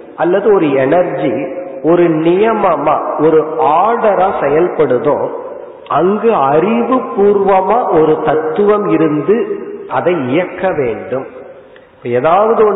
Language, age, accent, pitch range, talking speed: Tamil, 50-69, native, 155-220 Hz, 70 wpm